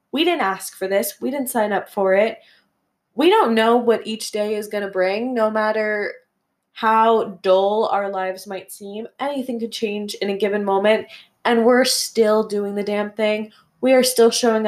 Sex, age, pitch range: female, 20-39, 200-235 Hz